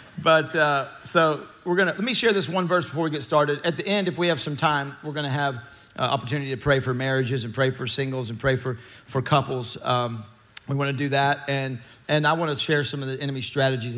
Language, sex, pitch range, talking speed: English, male, 120-145 Hz, 260 wpm